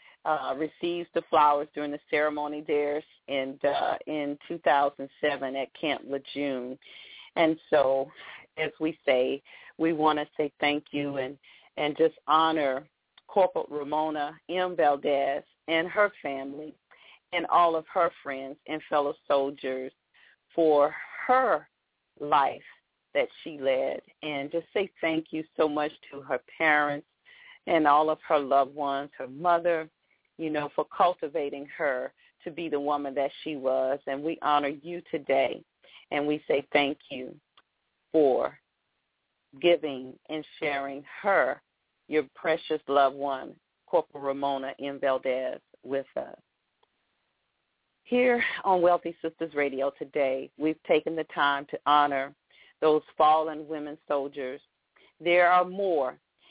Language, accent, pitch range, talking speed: English, American, 140-160 Hz, 130 wpm